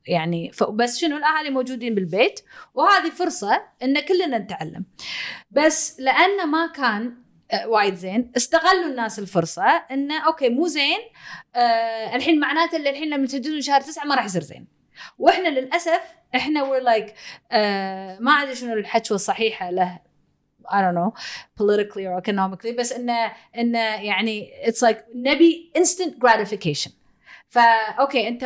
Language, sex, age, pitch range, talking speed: Arabic, female, 30-49, 220-315 Hz, 140 wpm